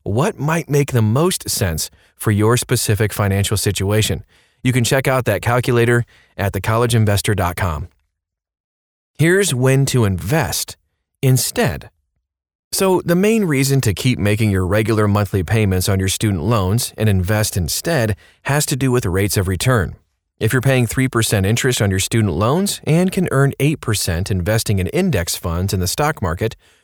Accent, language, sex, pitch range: American, English, male, 95-130 Hz